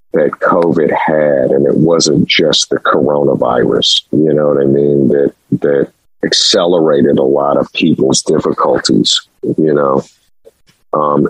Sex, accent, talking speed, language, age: male, American, 135 wpm, English, 50-69